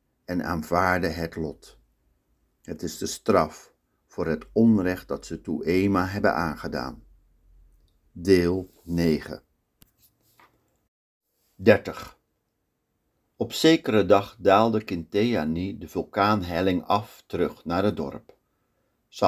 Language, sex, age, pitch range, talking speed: Dutch, male, 50-69, 85-110 Hz, 105 wpm